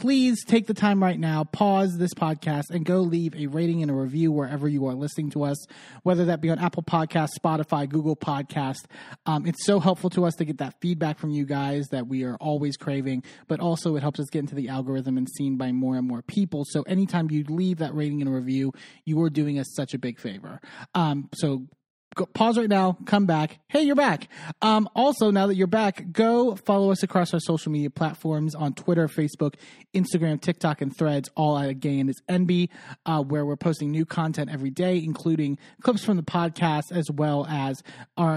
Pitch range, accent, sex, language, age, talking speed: 145-180 Hz, American, male, English, 30-49, 210 wpm